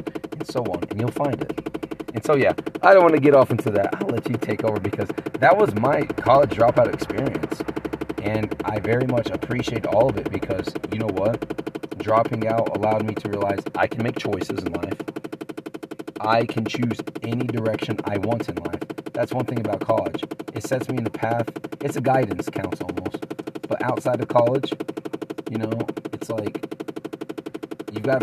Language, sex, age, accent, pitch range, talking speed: English, male, 30-49, American, 105-135 Hz, 185 wpm